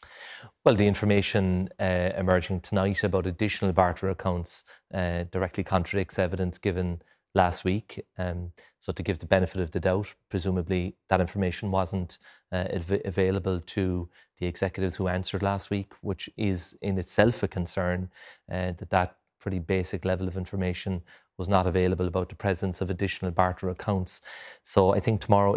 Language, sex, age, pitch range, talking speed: English, male, 30-49, 90-100 Hz, 155 wpm